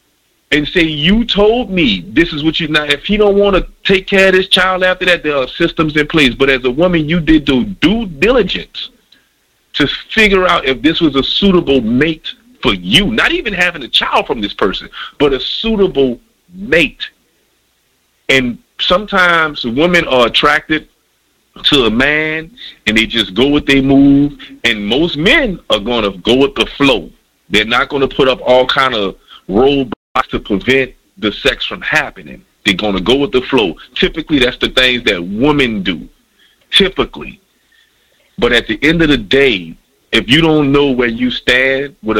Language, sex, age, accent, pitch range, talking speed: English, male, 40-59, American, 130-170 Hz, 185 wpm